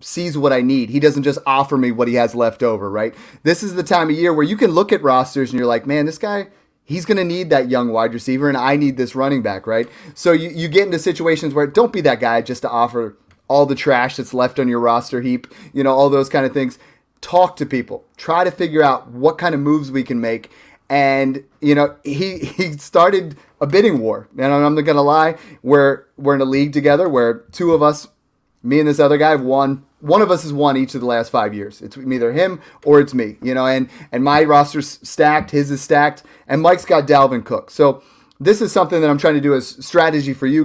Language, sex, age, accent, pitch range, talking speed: English, male, 30-49, American, 130-155 Hz, 250 wpm